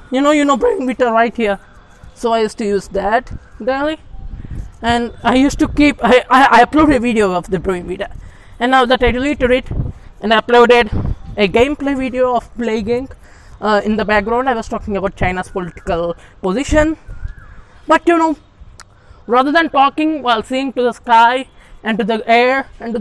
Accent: Indian